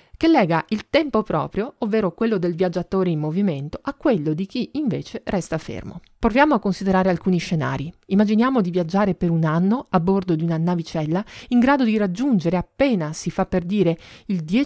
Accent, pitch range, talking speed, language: native, 170-230 Hz, 180 wpm, Italian